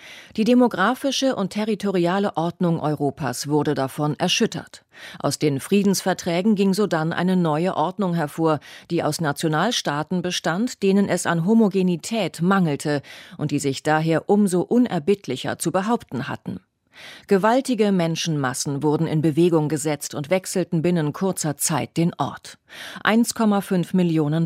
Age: 40-59